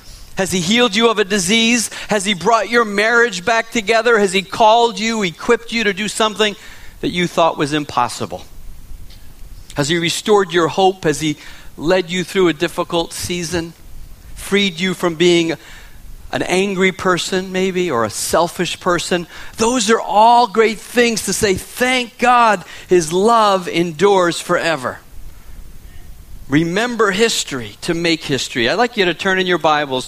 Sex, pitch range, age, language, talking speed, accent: male, 155-220 Hz, 50-69, English, 160 wpm, American